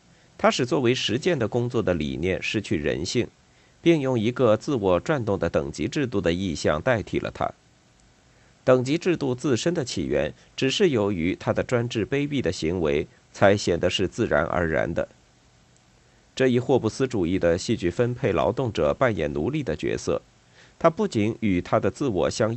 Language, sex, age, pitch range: Chinese, male, 50-69, 95-130 Hz